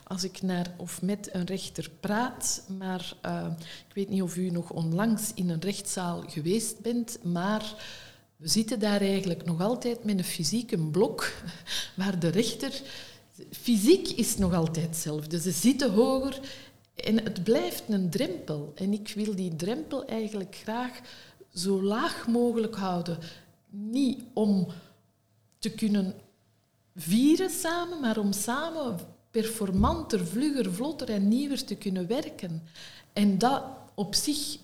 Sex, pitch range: female, 175-230 Hz